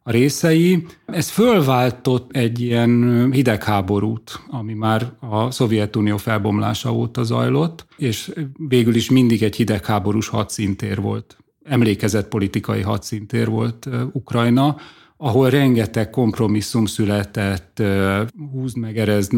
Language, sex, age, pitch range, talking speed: Hungarian, male, 30-49, 105-125 Hz, 105 wpm